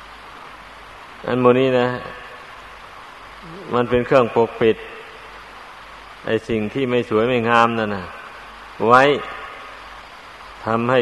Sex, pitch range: male, 115-125 Hz